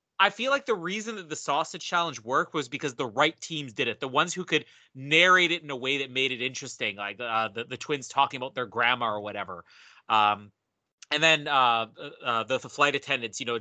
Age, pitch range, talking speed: 30-49, 130-180 Hz, 220 wpm